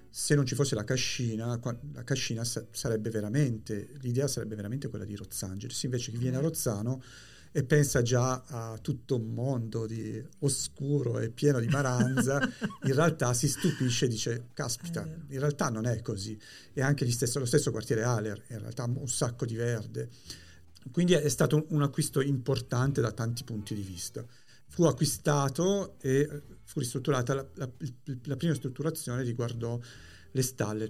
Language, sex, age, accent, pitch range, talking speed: Italian, male, 50-69, native, 115-145 Hz, 165 wpm